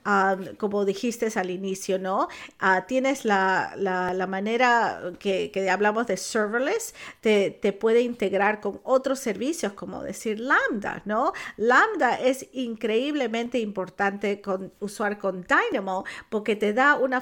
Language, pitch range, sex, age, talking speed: Spanish, 190-235 Hz, female, 50-69, 125 wpm